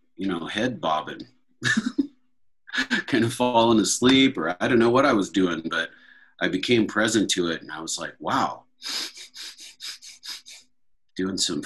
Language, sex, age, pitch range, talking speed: English, male, 30-49, 90-125 Hz, 150 wpm